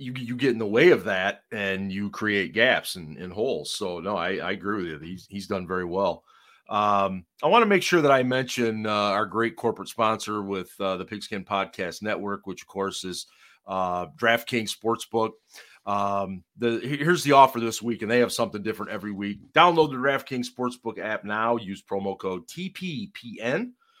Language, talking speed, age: English, 195 wpm, 40-59